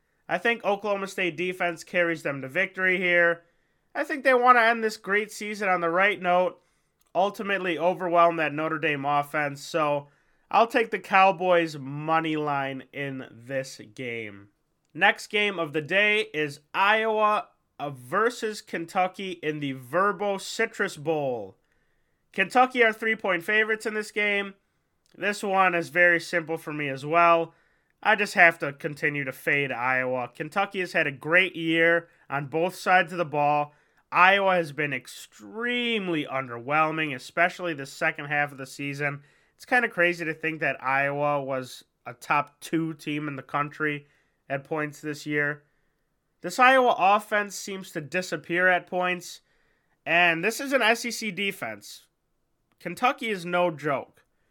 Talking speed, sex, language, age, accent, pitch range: 155 wpm, male, English, 20-39, American, 145-195 Hz